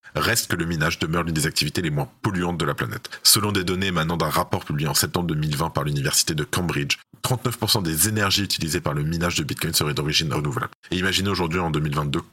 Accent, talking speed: French, 220 wpm